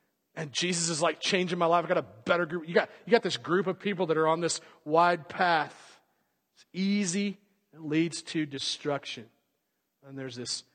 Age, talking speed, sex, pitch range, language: 40-59, 195 wpm, male, 155-225 Hz, English